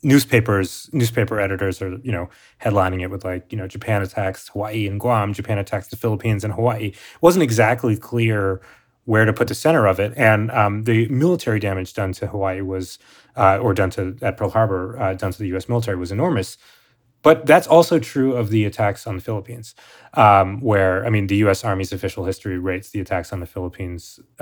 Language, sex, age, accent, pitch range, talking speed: English, male, 30-49, American, 95-115 Hz, 205 wpm